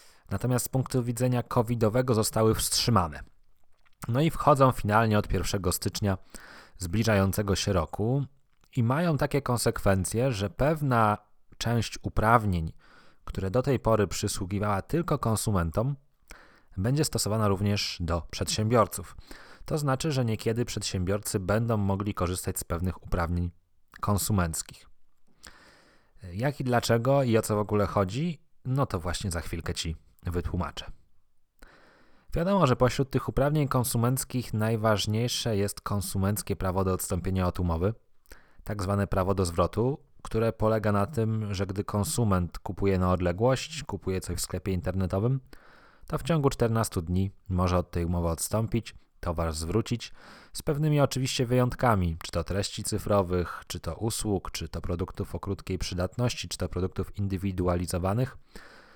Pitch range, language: 90-120 Hz, Polish